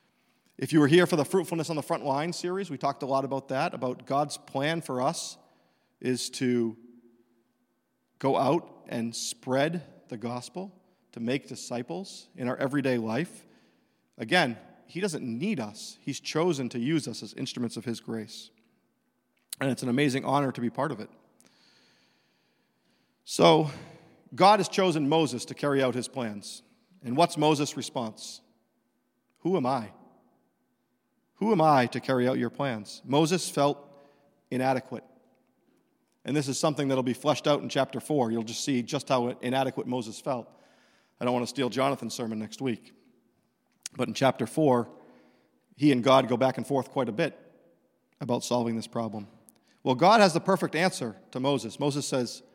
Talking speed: 170 wpm